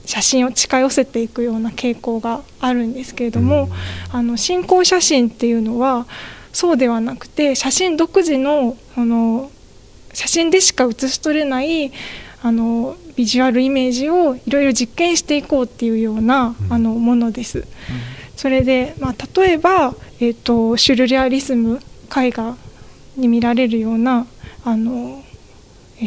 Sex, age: female, 20-39